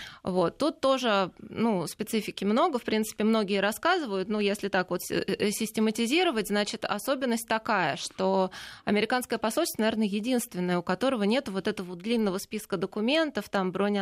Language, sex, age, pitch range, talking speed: Russian, female, 20-39, 195-235 Hz, 145 wpm